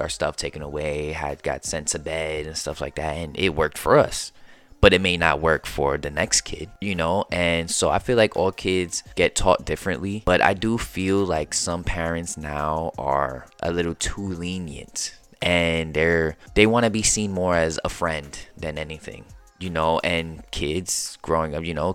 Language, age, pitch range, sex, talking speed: English, 20-39, 75-90 Hz, male, 200 wpm